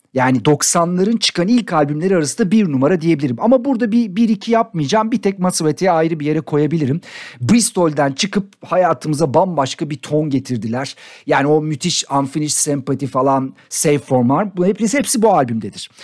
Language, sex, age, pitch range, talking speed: Turkish, male, 50-69, 140-200 Hz, 150 wpm